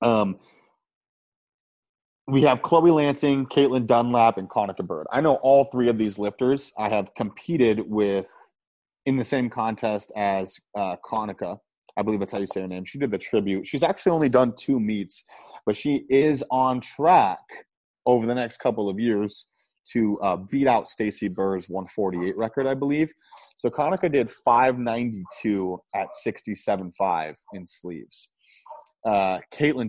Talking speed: 155 wpm